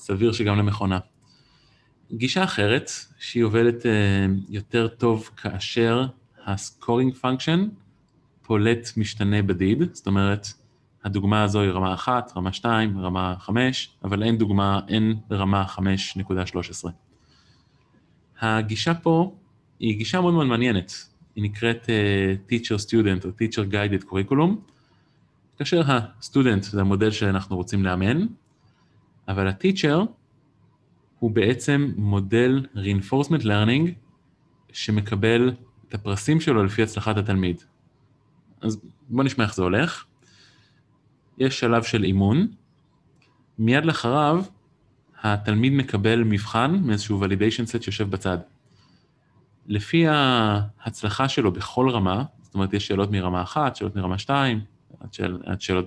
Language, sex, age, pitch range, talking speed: Hebrew, male, 30-49, 100-130 Hz, 115 wpm